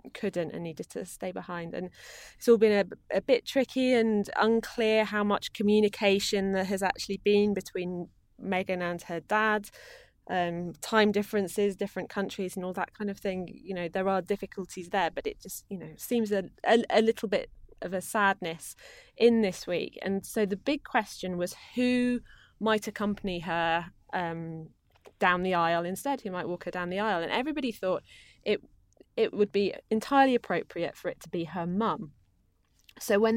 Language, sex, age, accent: English, female, 20-39, British